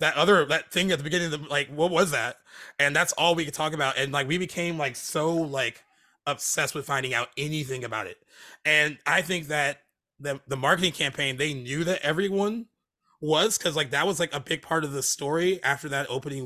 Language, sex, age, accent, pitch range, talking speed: English, male, 30-49, American, 130-165 Hz, 220 wpm